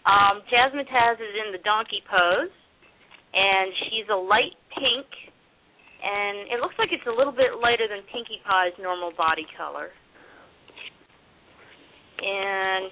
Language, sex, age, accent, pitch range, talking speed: English, female, 40-59, American, 195-240 Hz, 135 wpm